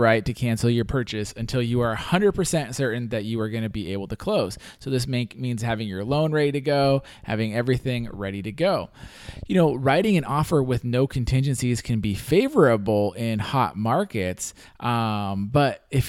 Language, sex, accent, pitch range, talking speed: English, male, American, 105-130 Hz, 185 wpm